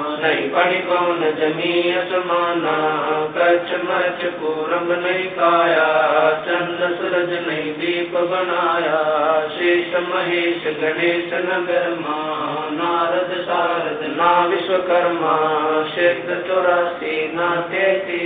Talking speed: 55 wpm